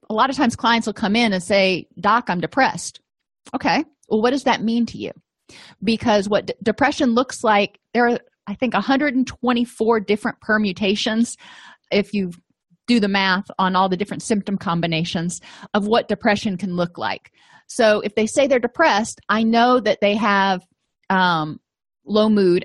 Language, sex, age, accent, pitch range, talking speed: English, female, 30-49, American, 190-235 Hz, 170 wpm